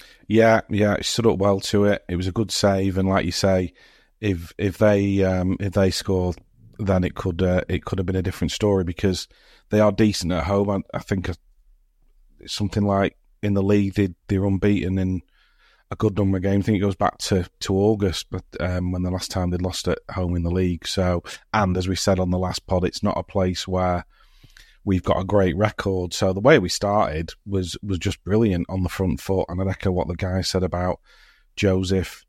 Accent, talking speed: British, 225 wpm